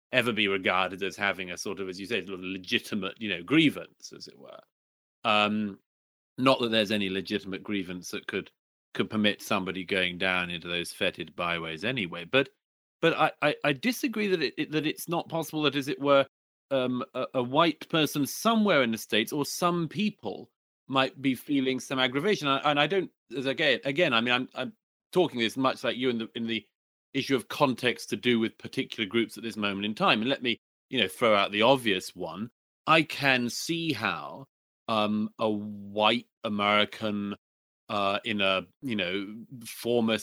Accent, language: British, English